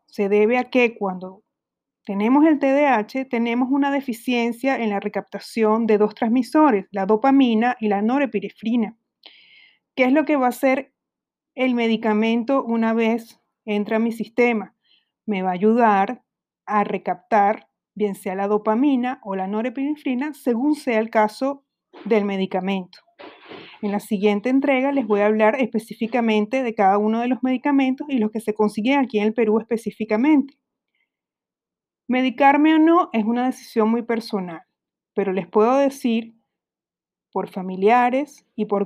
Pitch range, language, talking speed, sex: 210-265 Hz, Spanish, 150 wpm, female